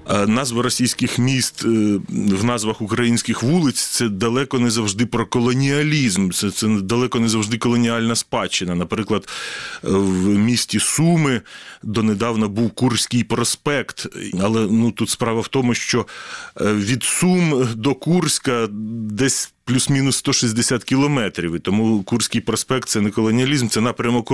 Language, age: Ukrainian, 30-49